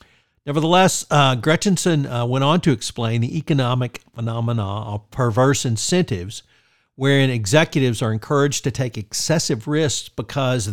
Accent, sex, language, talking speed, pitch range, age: American, male, English, 130 wpm, 115-140 Hz, 50-69